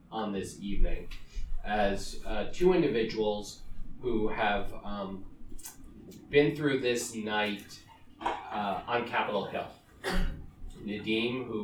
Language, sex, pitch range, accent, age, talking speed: English, male, 95-115 Hz, American, 30-49, 100 wpm